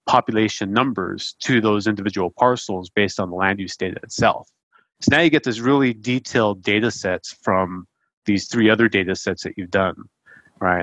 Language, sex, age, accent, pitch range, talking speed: English, male, 30-49, American, 100-120 Hz, 175 wpm